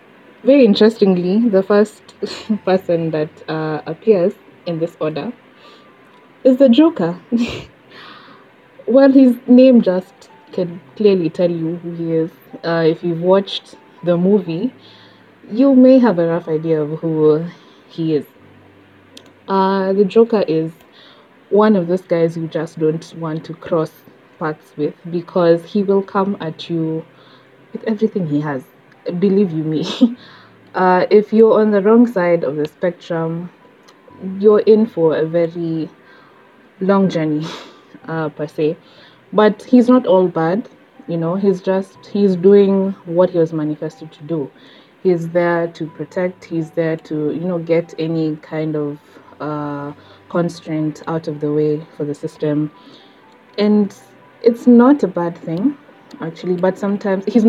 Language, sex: English, female